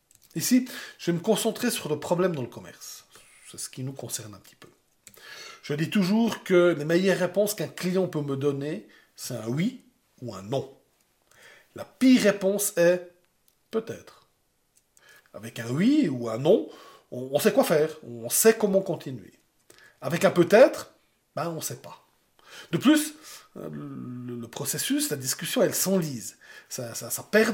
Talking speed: 160 wpm